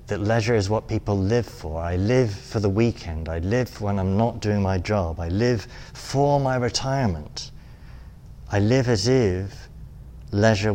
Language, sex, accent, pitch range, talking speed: English, male, British, 95-120 Hz, 165 wpm